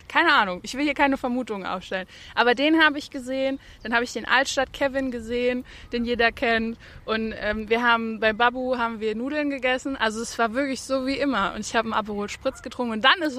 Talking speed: 225 wpm